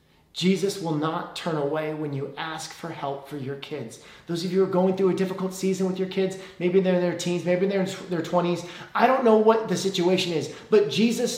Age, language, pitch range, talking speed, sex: 30-49, English, 165-210 Hz, 235 wpm, male